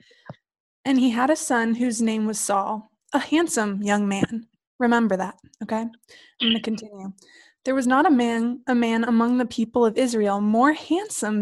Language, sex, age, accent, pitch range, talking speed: English, female, 20-39, American, 225-275 Hz, 180 wpm